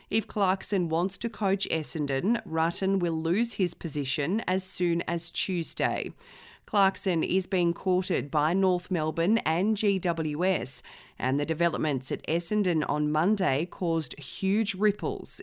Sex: female